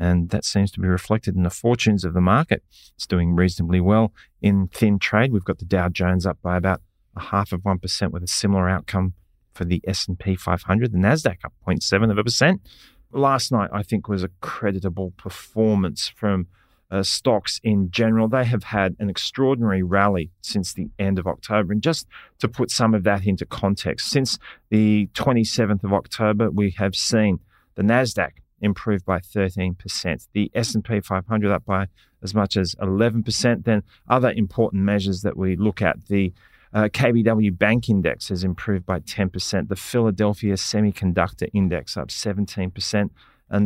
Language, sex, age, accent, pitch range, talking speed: English, male, 30-49, Australian, 95-110 Hz, 175 wpm